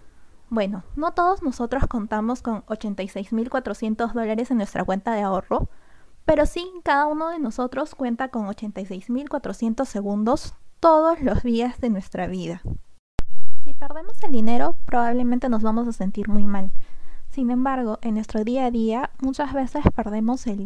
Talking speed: 150 wpm